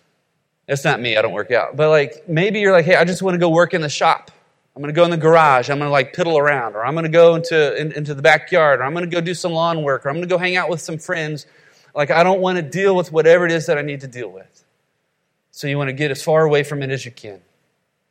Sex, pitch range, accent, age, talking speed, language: male, 150-175 Hz, American, 30-49, 310 wpm, English